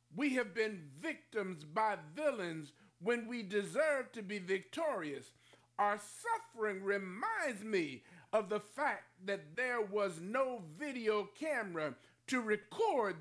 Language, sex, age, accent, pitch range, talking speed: English, male, 50-69, American, 170-270 Hz, 125 wpm